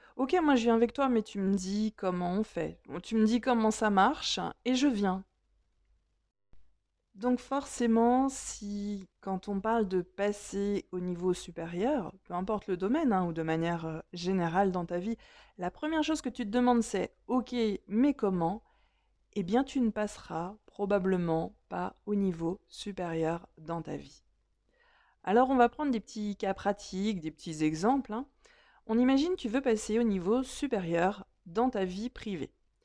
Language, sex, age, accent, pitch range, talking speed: French, female, 20-39, French, 170-235 Hz, 170 wpm